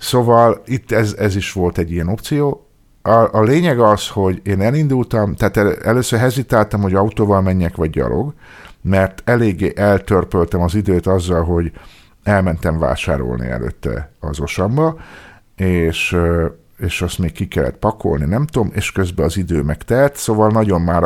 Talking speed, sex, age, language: 155 wpm, male, 50-69, Hungarian